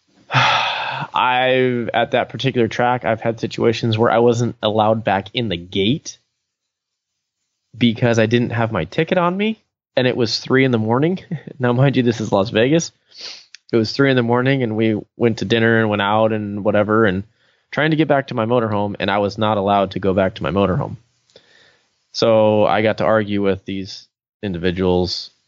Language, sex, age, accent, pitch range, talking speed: English, male, 20-39, American, 100-125 Hz, 190 wpm